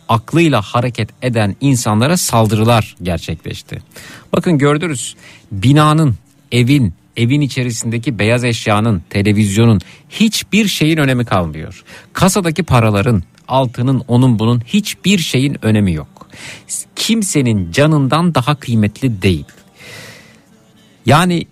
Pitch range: 100-145 Hz